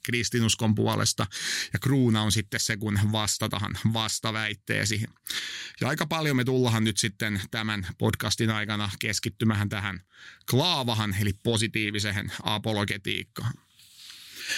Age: 30-49